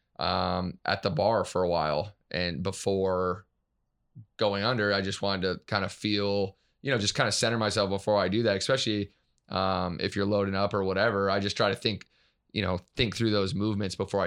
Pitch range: 90-105 Hz